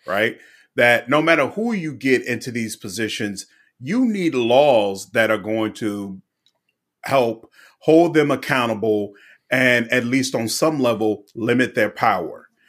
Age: 40-59